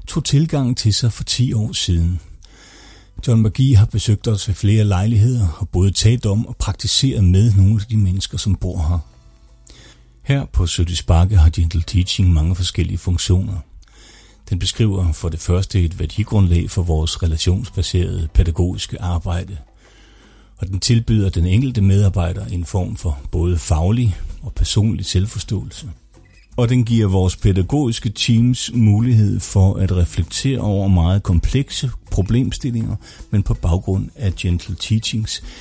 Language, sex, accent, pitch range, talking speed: Danish, male, native, 90-110 Hz, 145 wpm